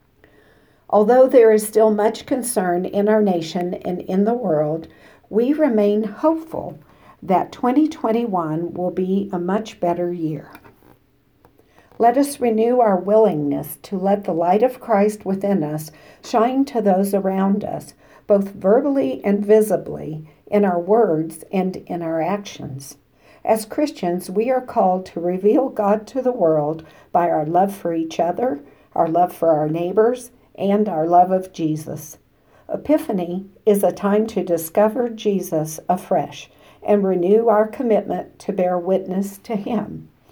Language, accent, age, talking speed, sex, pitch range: English, American, 60-79, 145 wpm, female, 165-220 Hz